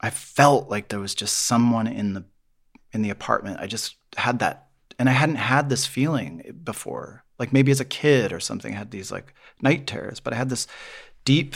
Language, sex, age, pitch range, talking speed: English, male, 30-49, 105-130 Hz, 215 wpm